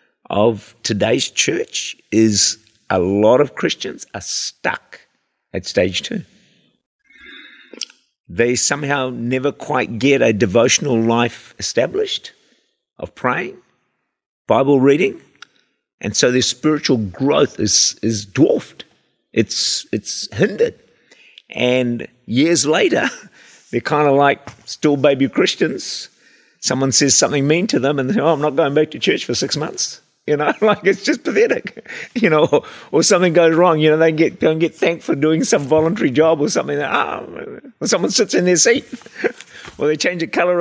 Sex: male